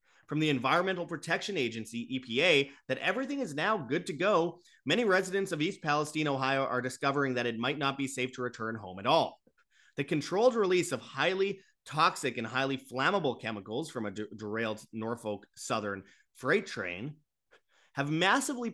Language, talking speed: English, 165 wpm